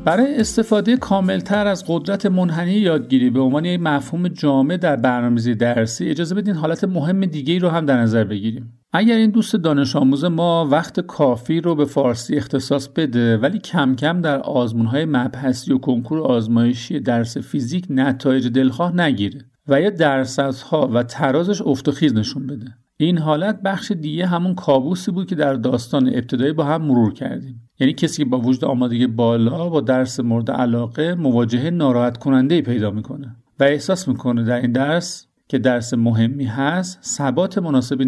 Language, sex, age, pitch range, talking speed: Persian, male, 50-69, 125-170 Hz, 170 wpm